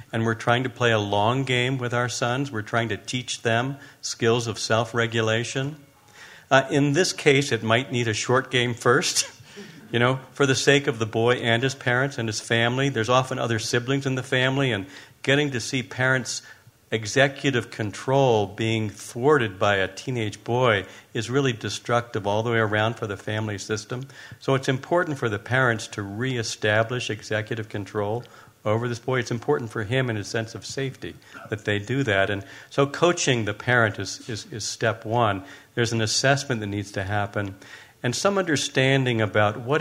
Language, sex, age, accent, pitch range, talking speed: English, male, 50-69, American, 110-135 Hz, 185 wpm